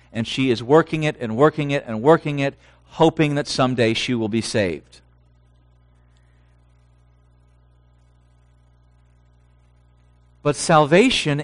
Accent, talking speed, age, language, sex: American, 105 wpm, 50-69, English, male